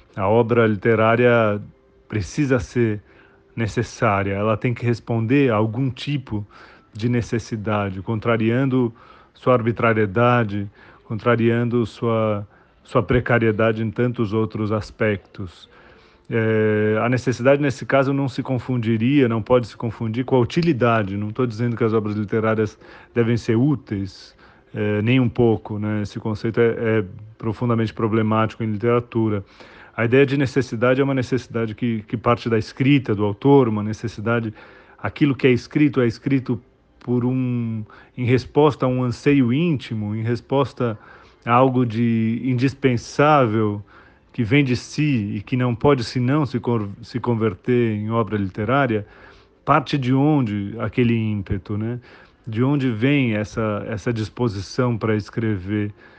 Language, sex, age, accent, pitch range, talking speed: Portuguese, male, 40-59, Brazilian, 110-125 Hz, 140 wpm